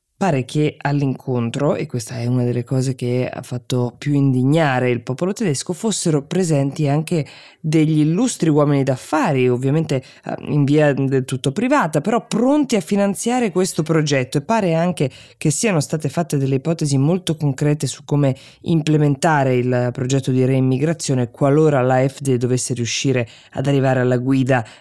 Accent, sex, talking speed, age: native, female, 150 wpm, 20-39